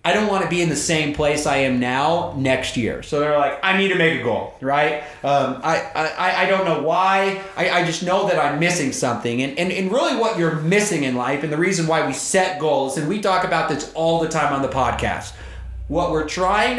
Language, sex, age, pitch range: English, male, 30-49, 150-195 Hz